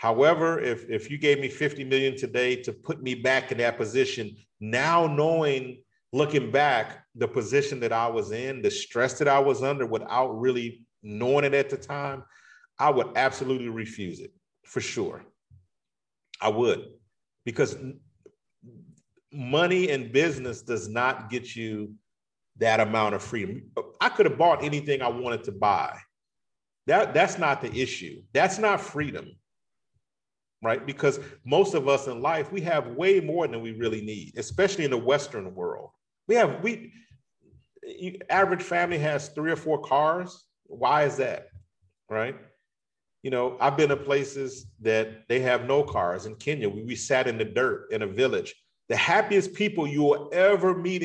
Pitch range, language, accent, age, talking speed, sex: 120-170 Hz, English, American, 40-59, 165 wpm, male